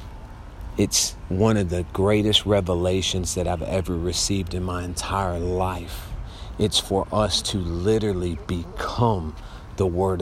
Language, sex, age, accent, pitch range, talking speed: English, male, 40-59, American, 90-105 Hz, 130 wpm